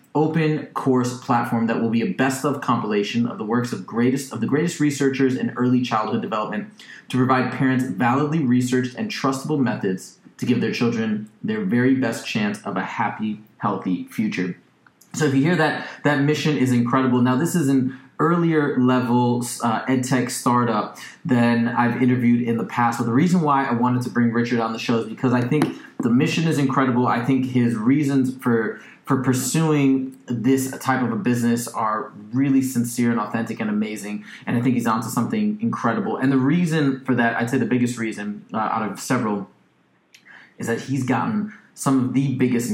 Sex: male